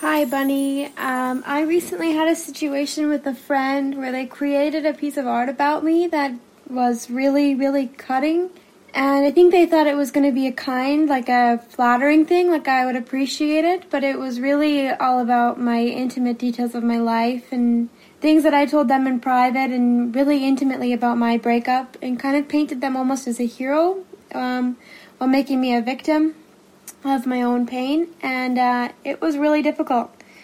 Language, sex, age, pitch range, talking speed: English, female, 10-29, 245-285 Hz, 190 wpm